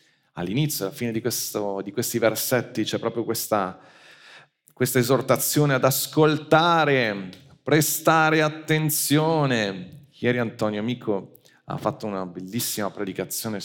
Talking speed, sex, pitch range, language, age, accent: 115 wpm, male, 100-145 Hz, Italian, 40-59, native